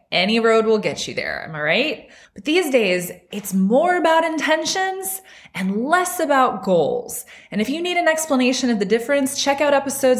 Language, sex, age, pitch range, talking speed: English, female, 20-39, 190-260 Hz, 190 wpm